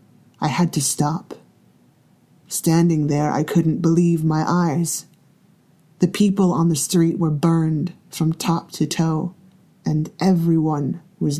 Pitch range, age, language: 155-175 Hz, 30-49, English